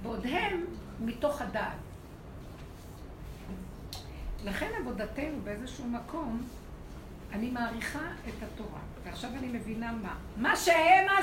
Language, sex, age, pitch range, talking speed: Hebrew, female, 60-79, 235-290 Hz, 95 wpm